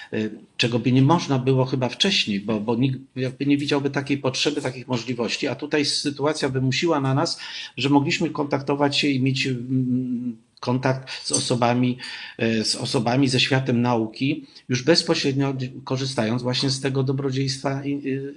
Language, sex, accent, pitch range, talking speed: Polish, male, native, 115-140 Hz, 145 wpm